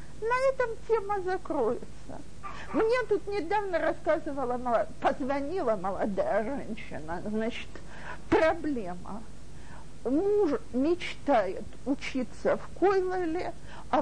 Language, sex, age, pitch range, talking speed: Russian, female, 50-69, 245-385 Hz, 80 wpm